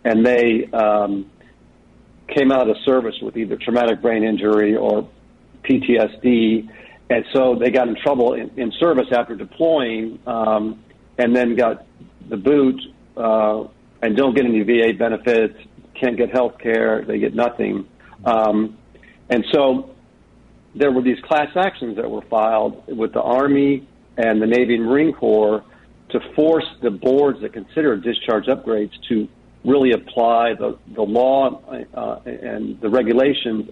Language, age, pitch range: English, 50-69, 110-130 Hz